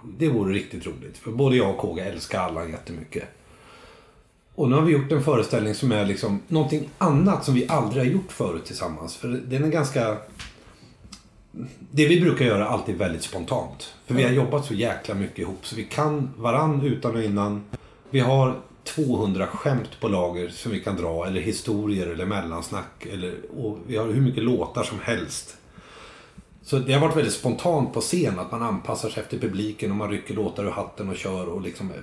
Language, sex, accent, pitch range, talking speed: Swedish, male, native, 105-140 Hz, 195 wpm